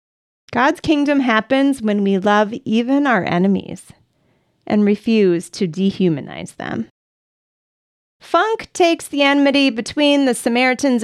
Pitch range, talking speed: 190-265 Hz, 115 wpm